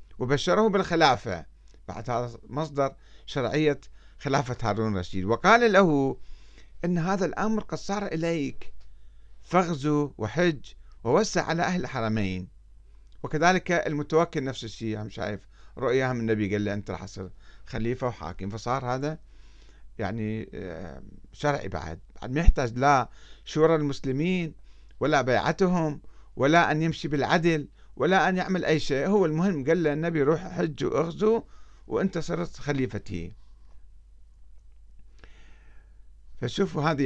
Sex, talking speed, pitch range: male, 120 wpm, 100-155 Hz